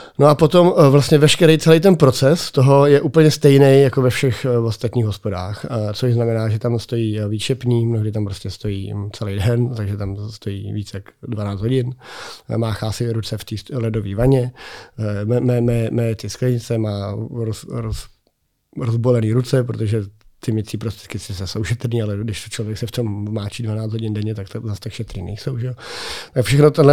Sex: male